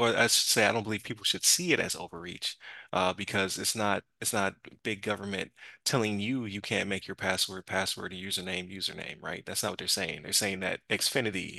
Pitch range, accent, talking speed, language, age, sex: 95-110 Hz, American, 225 wpm, English, 20-39, male